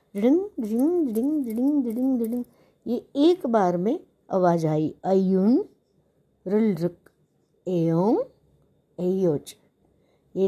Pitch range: 170-215 Hz